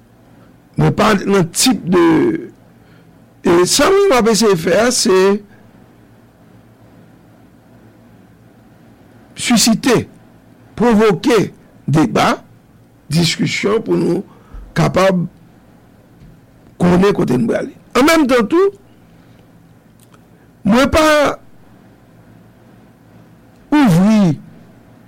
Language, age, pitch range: English, 60-79, 180-260 Hz